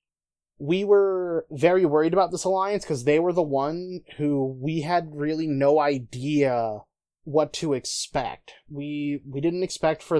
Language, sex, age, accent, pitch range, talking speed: English, male, 20-39, American, 140-160 Hz, 155 wpm